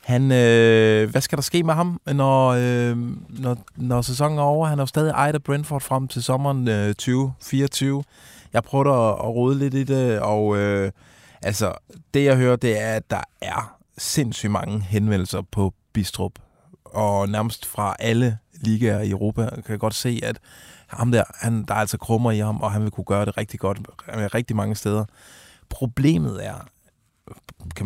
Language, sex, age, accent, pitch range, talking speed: Danish, male, 20-39, native, 105-125 Hz, 185 wpm